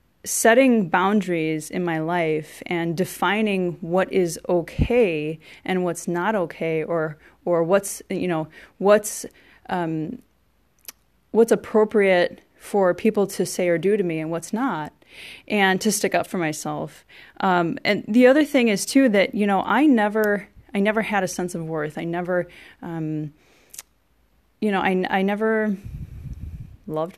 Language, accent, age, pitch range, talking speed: English, American, 30-49, 165-200 Hz, 150 wpm